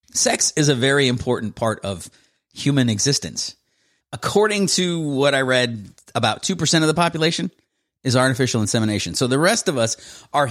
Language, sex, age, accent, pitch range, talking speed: English, male, 30-49, American, 105-140 Hz, 160 wpm